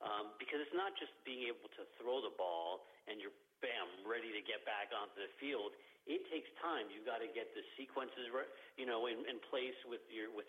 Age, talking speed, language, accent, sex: 50-69, 225 wpm, English, American, male